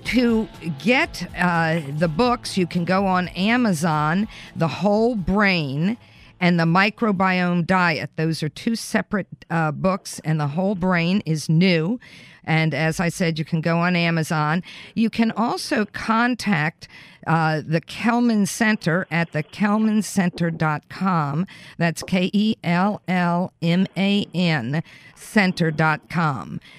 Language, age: English, 50-69